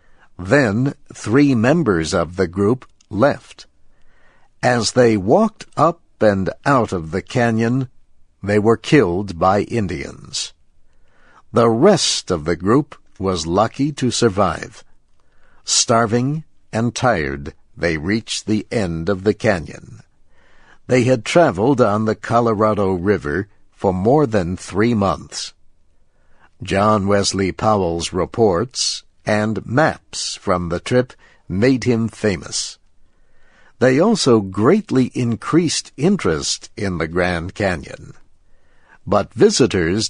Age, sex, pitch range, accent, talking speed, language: 60-79, male, 90-120 Hz, American, 110 wpm, English